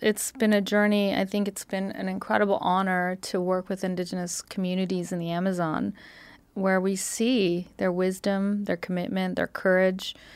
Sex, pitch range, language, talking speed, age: female, 180-200 Hz, English, 160 wpm, 40-59